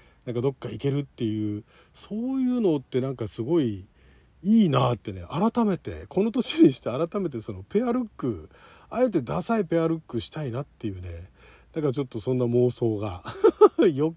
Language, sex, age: Japanese, male, 40-59